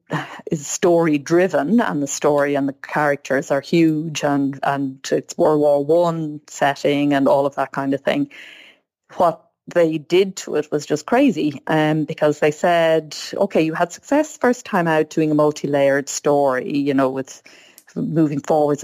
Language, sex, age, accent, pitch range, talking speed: English, female, 30-49, Irish, 145-170 Hz, 170 wpm